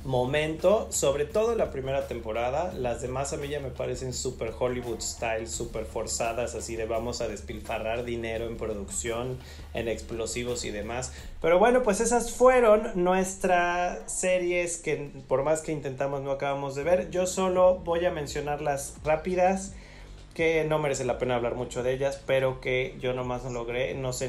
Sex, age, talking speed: male, 30-49, 175 wpm